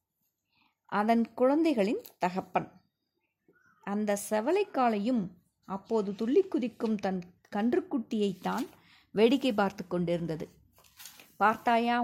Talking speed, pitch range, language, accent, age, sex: 75 wpm, 185-235 Hz, Tamil, native, 20-39, female